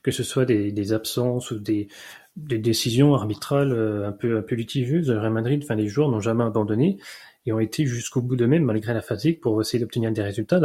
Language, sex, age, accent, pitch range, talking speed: French, male, 30-49, French, 115-140 Hz, 225 wpm